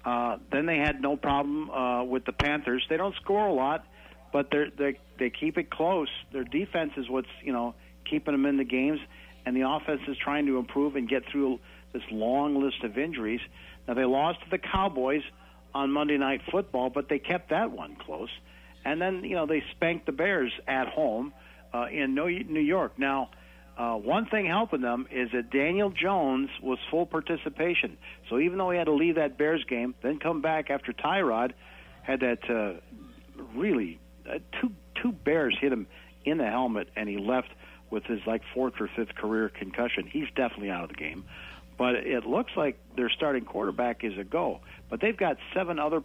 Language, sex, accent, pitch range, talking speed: English, male, American, 105-150 Hz, 195 wpm